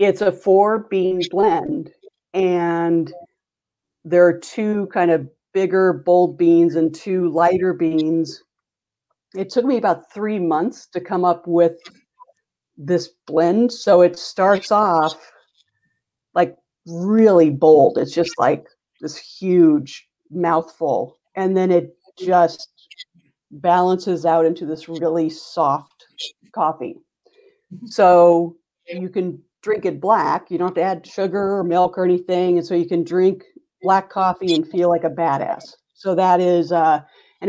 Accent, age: American, 50-69